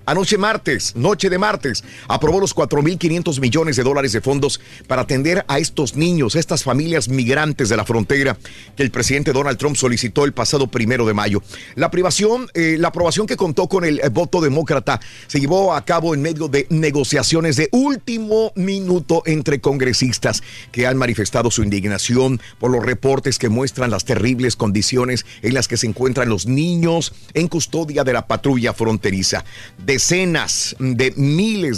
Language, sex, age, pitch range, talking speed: Spanish, male, 50-69, 115-160 Hz, 170 wpm